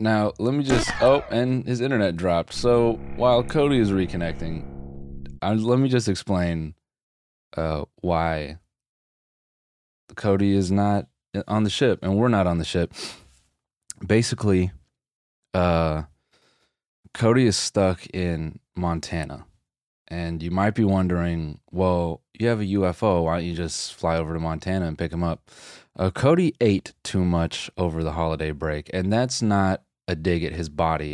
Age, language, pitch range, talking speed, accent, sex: 20-39, English, 80-100 Hz, 150 wpm, American, male